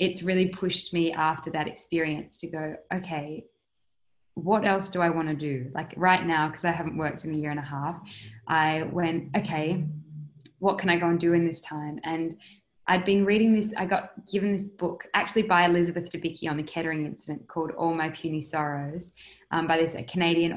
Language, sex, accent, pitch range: English, female, Australian, 155-175 Hz